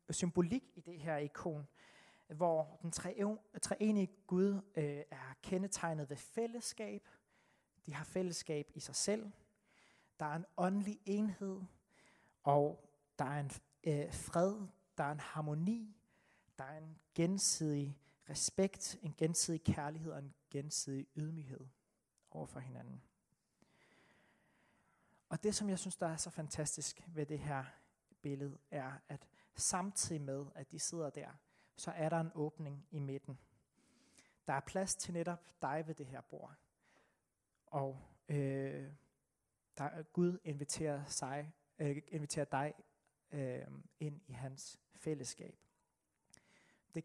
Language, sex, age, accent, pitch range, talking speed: Danish, male, 30-49, native, 145-180 Hz, 130 wpm